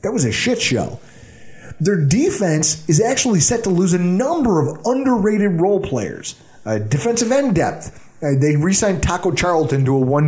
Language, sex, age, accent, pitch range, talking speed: English, male, 30-49, American, 150-215 Hz, 180 wpm